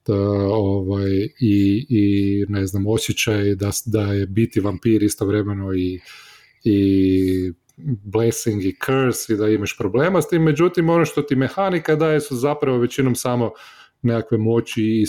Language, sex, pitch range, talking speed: Croatian, male, 110-135 Hz, 145 wpm